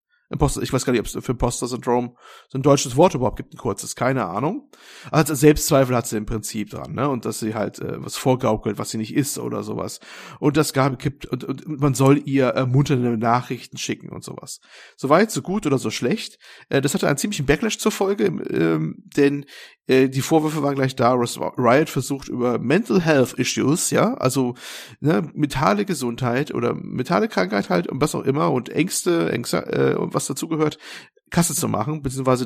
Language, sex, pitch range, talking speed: German, male, 120-150 Hz, 195 wpm